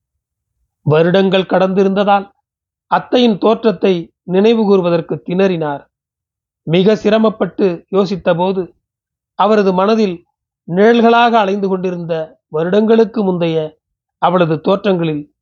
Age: 40-59